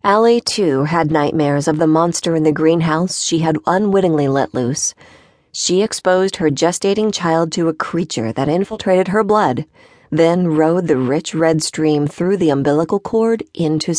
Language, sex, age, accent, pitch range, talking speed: English, female, 40-59, American, 155-200 Hz, 165 wpm